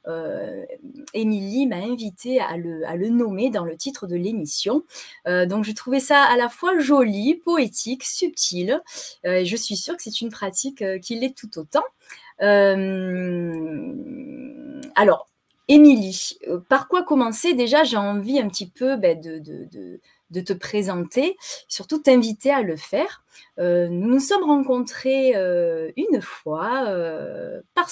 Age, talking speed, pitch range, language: 30-49, 155 wpm, 195-275 Hz, French